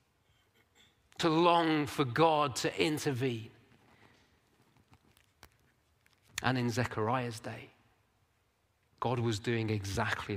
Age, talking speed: 40-59, 80 wpm